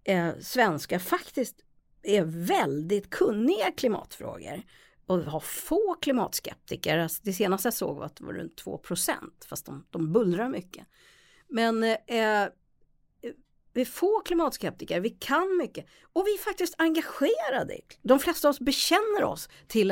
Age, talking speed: 50-69, 150 wpm